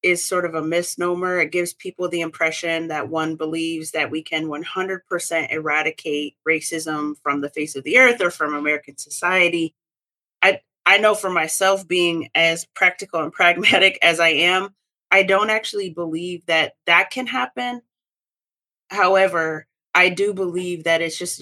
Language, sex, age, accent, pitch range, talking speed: English, female, 30-49, American, 160-185 Hz, 160 wpm